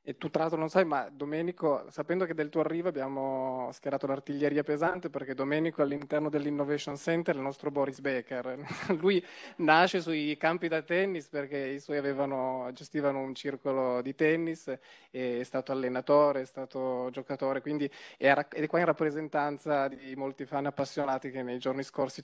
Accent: native